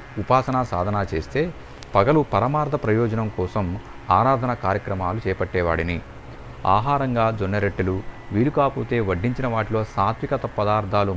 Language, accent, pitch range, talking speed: Telugu, native, 95-120 Hz, 95 wpm